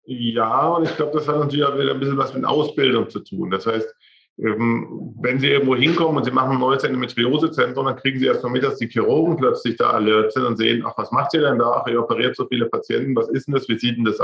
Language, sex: German, male